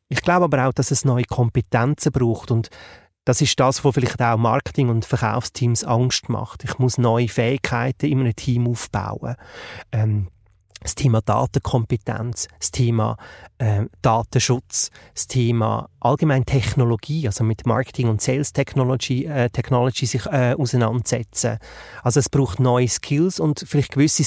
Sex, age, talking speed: male, 30-49, 150 wpm